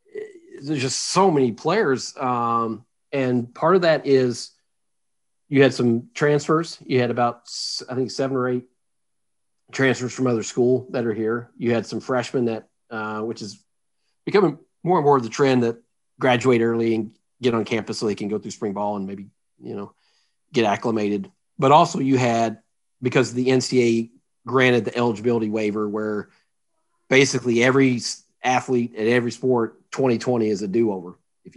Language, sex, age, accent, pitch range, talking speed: English, male, 40-59, American, 110-130 Hz, 165 wpm